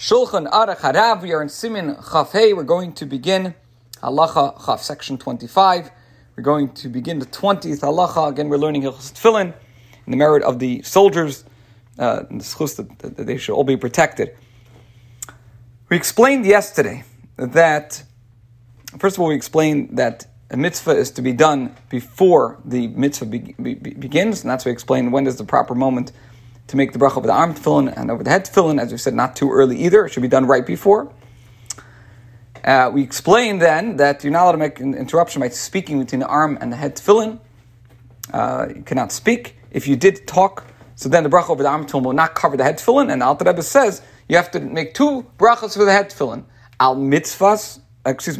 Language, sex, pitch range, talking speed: English, male, 125-170 Hz, 200 wpm